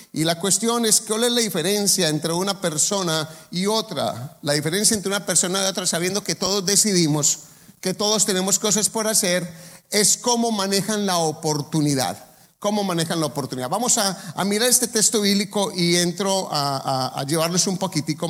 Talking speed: 175 wpm